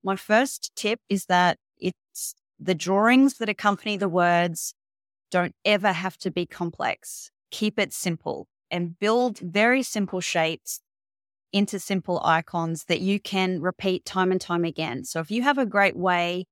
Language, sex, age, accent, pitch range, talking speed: English, female, 30-49, Australian, 175-210 Hz, 160 wpm